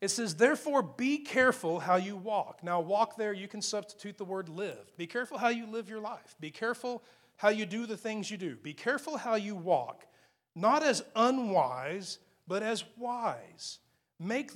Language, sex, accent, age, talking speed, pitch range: English, male, American, 40-59, 185 wpm, 175-235 Hz